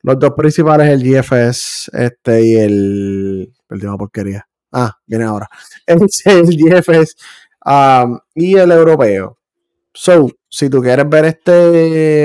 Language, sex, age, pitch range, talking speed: Spanish, male, 20-39, 120-145 Hz, 135 wpm